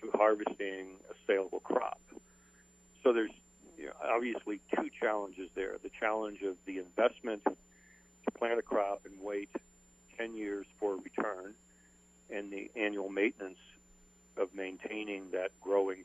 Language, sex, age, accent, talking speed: English, male, 60-79, American, 140 wpm